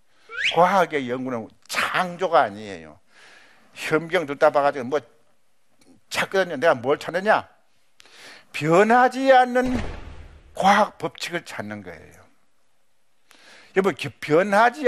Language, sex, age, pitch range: Korean, male, 60-79, 160-225 Hz